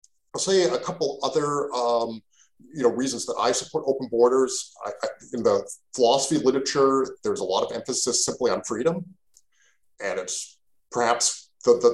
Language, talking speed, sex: English, 165 wpm, male